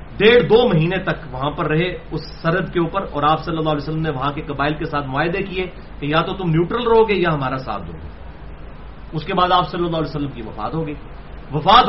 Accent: Indian